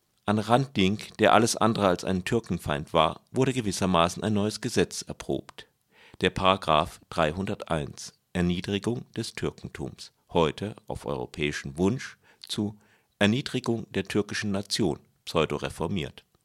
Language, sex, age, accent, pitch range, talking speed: German, male, 50-69, German, 95-115 Hz, 115 wpm